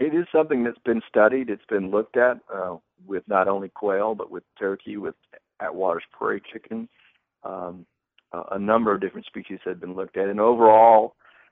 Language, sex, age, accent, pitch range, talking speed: English, male, 50-69, American, 95-125 Hz, 175 wpm